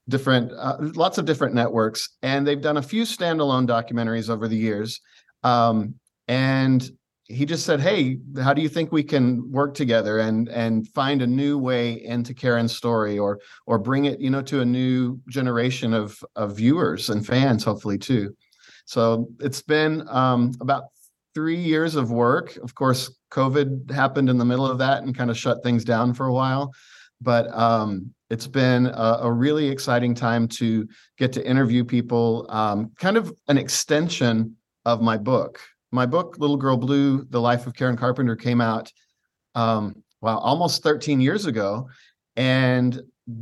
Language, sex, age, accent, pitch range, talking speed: English, male, 50-69, American, 115-140 Hz, 170 wpm